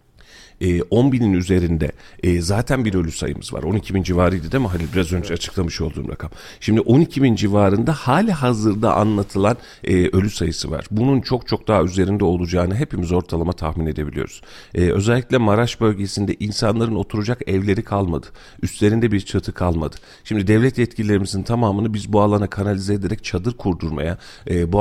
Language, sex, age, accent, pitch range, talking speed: Turkish, male, 40-59, native, 90-110 Hz, 150 wpm